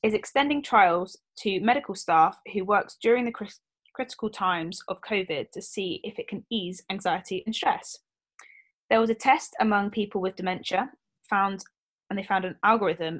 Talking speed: 175 wpm